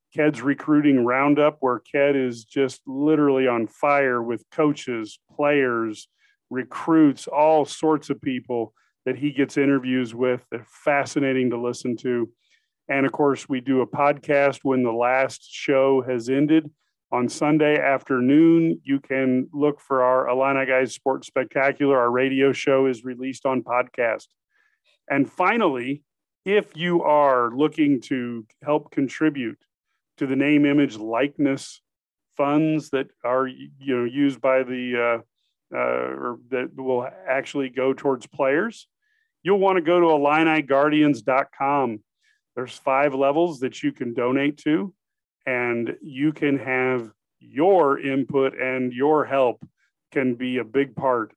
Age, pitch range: 40-59, 125-145 Hz